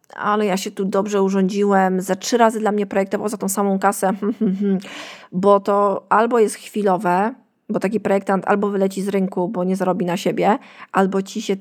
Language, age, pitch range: Polish, 20-39, 190-220 Hz